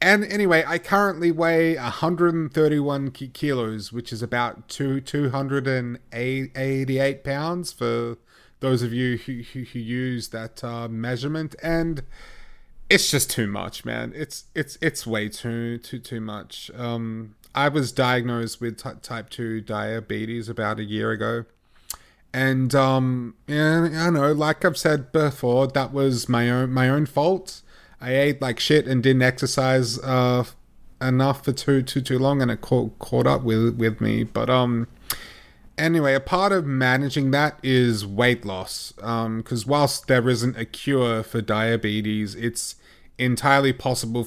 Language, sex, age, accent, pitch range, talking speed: English, male, 30-49, Australian, 115-140 Hz, 160 wpm